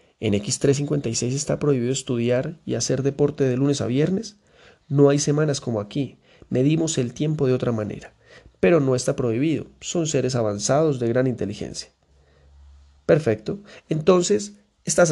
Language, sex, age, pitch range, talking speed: Spanish, male, 30-49, 120-145 Hz, 145 wpm